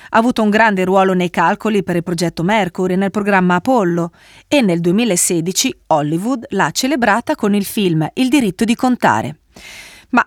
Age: 30-49